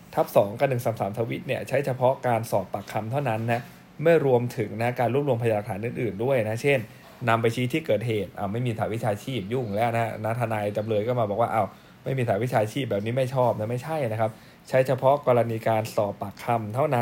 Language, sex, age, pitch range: Thai, male, 20-39, 110-135 Hz